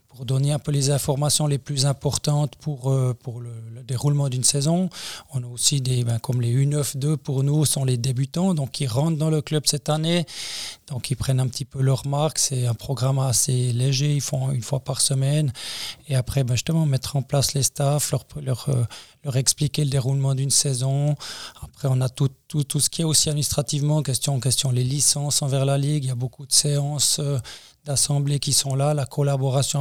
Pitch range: 135-150 Hz